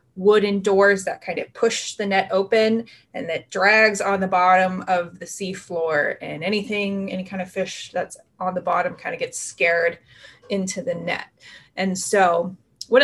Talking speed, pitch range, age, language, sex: 175 wpm, 190-235 Hz, 20-39, English, female